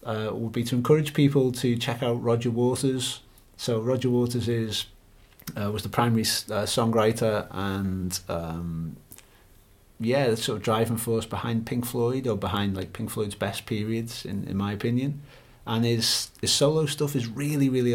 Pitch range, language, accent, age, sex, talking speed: 105-125 Hz, English, British, 30-49, male, 170 wpm